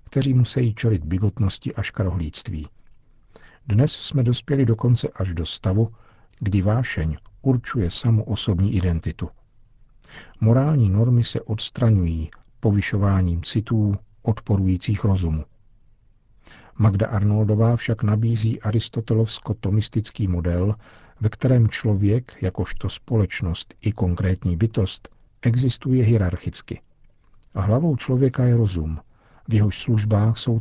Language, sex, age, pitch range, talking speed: Czech, male, 50-69, 95-115 Hz, 100 wpm